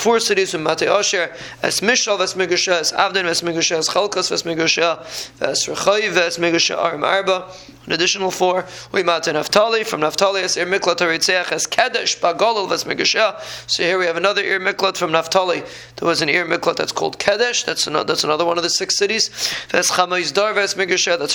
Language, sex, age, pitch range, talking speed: English, male, 20-39, 175-200 Hz, 190 wpm